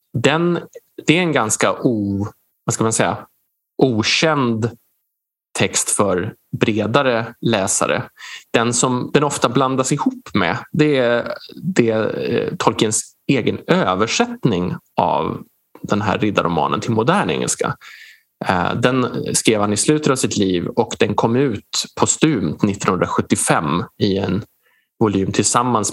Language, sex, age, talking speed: Swedish, male, 20-39, 125 wpm